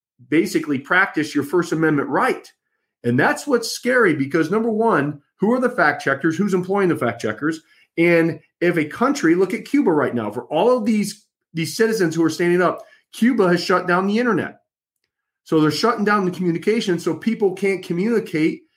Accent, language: American, English